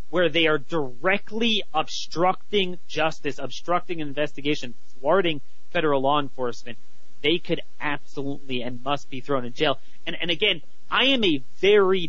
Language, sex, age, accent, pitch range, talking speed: English, male, 30-49, American, 135-175 Hz, 140 wpm